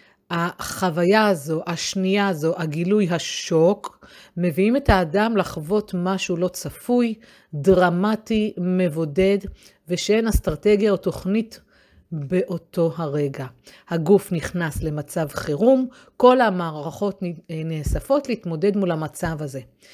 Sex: female